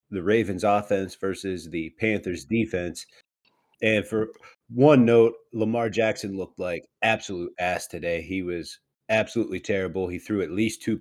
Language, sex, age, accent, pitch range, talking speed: English, male, 30-49, American, 95-120 Hz, 145 wpm